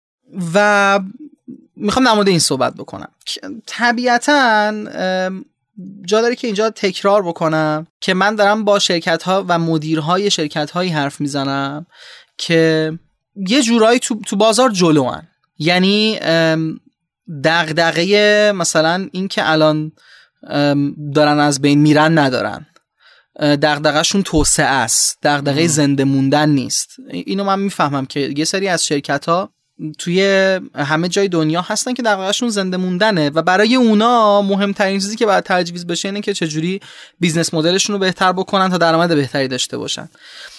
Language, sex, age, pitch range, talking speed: Persian, male, 30-49, 155-205 Hz, 130 wpm